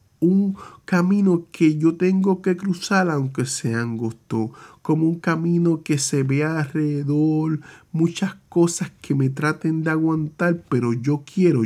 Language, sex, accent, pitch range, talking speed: Spanish, male, Venezuelan, 125-160 Hz, 140 wpm